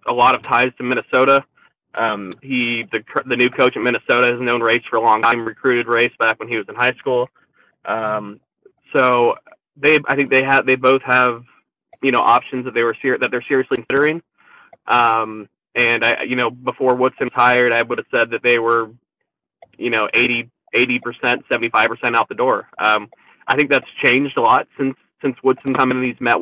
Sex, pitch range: male, 115-130 Hz